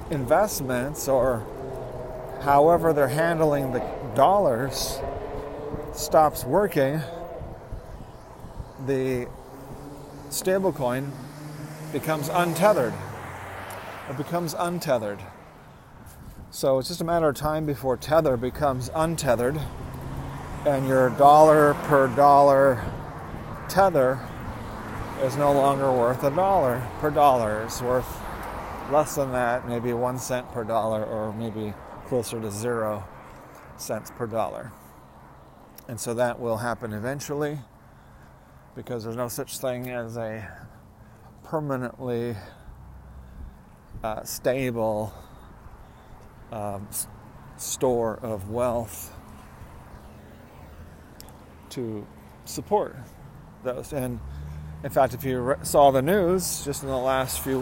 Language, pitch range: English, 110-145 Hz